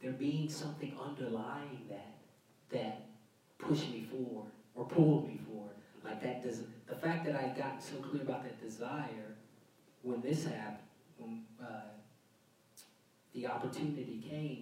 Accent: American